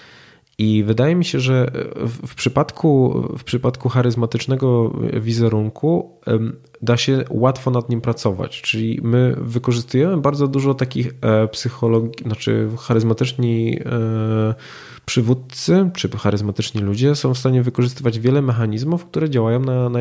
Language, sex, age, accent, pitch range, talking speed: Polish, male, 20-39, native, 105-130 Hz, 120 wpm